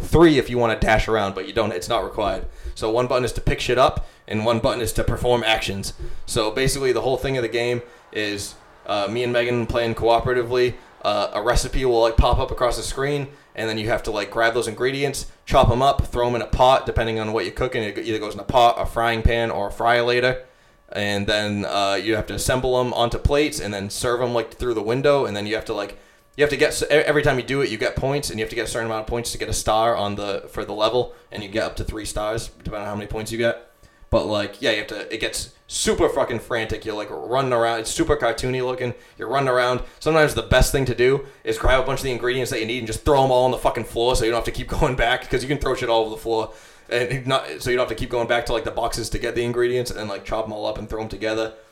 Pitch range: 110-125 Hz